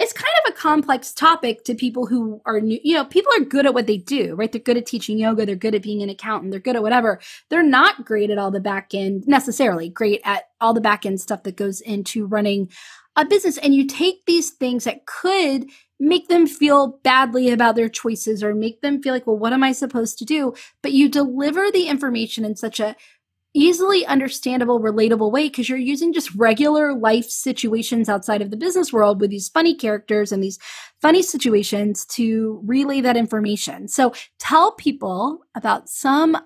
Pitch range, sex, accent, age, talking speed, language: 215-285 Hz, female, American, 20-39, 200 wpm, English